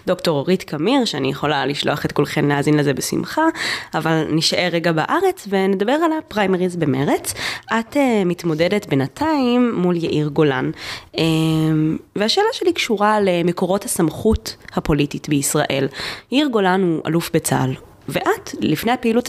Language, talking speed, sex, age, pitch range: Hebrew, 125 wpm, female, 20-39, 160-215 Hz